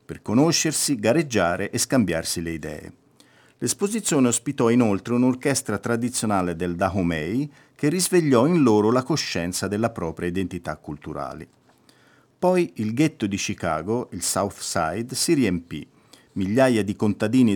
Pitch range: 95-135 Hz